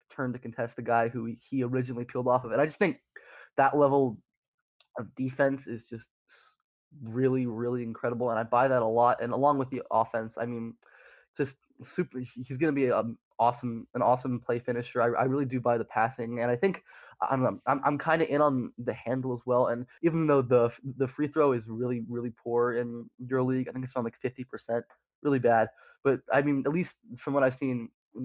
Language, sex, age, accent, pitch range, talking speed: English, male, 20-39, American, 120-135 Hz, 220 wpm